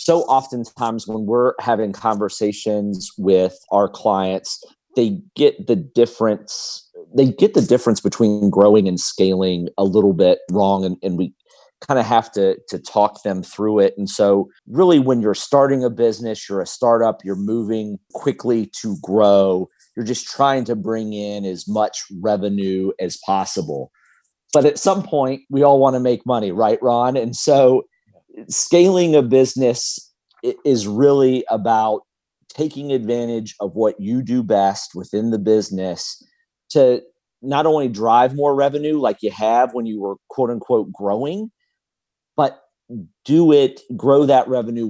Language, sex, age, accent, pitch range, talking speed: English, male, 40-59, American, 100-135 Hz, 155 wpm